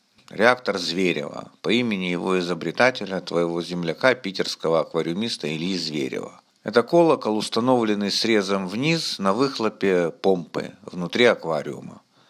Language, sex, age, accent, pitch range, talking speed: Russian, male, 50-69, native, 95-125 Hz, 105 wpm